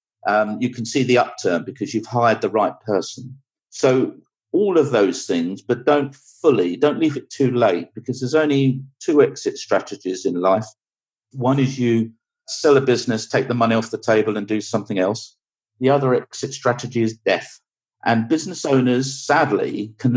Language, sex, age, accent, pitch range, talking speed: English, male, 50-69, British, 110-140 Hz, 180 wpm